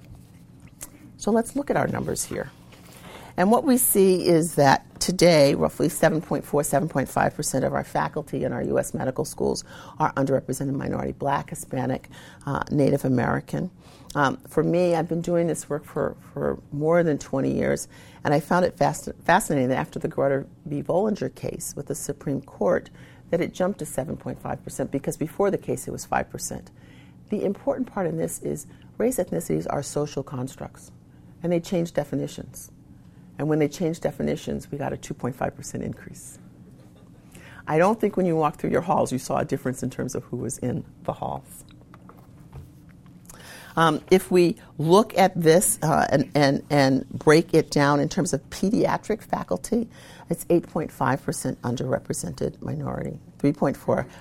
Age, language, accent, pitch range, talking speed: 50-69, English, American, 130-170 Hz, 160 wpm